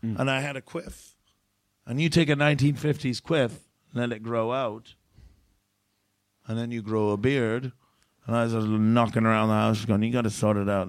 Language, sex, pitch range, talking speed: English, male, 105-150 Hz, 205 wpm